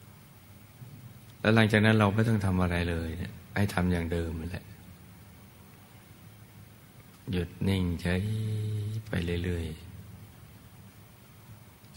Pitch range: 90-105 Hz